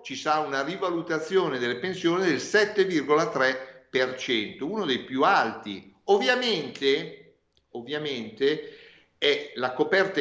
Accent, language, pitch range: native, Italian, 130-180 Hz